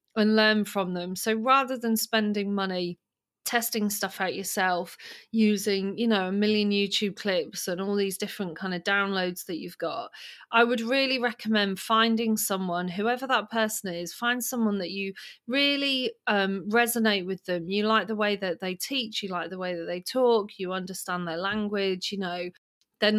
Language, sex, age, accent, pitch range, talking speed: English, female, 30-49, British, 185-230 Hz, 180 wpm